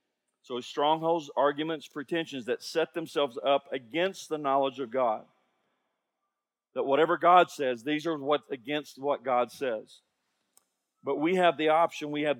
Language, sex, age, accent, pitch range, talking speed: English, male, 40-59, American, 145-175 Hz, 145 wpm